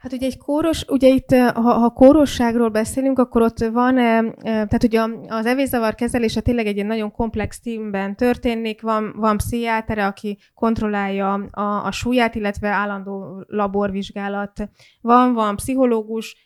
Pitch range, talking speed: 205-235 Hz, 140 wpm